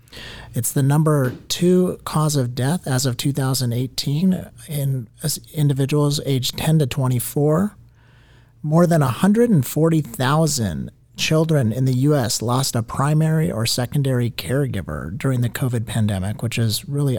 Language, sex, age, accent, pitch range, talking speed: English, male, 40-59, American, 120-150 Hz, 125 wpm